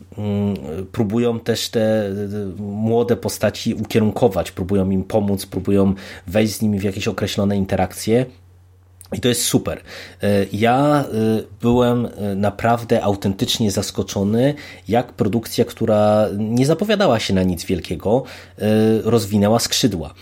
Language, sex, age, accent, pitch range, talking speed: Polish, male, 30-49, native, 95-110 Hz, 110 wpm